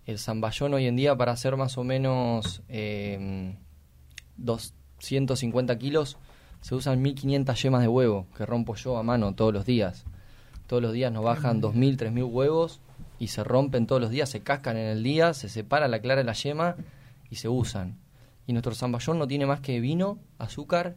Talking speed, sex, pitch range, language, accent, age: 185 wpm, male, 115-135 Hz, Spanish, Argentinian, 20-39